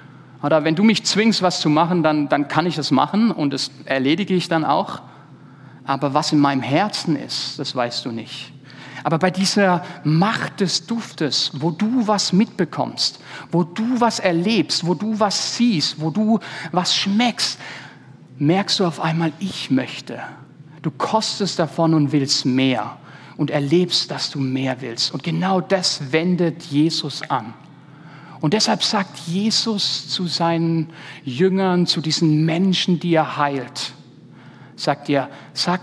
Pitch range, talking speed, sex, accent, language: 140-175 Hz, 155 wpm, male, German, German